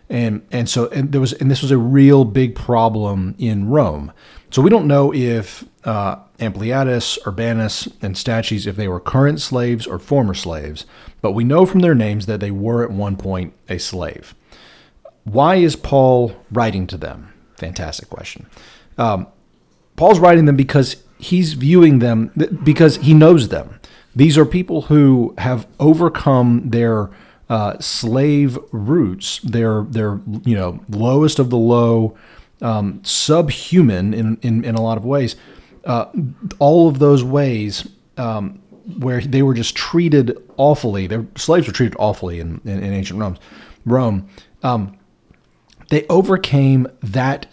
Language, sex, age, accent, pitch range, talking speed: English, male, 40-59, American, 110-140 Hz, 155 wpm